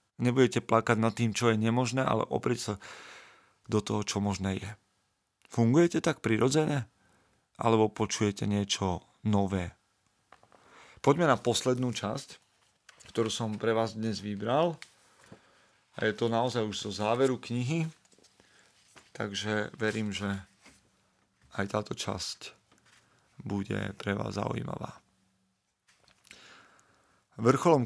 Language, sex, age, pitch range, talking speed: Slovak, male, 40-59, 105-120 Hz, 110 wpm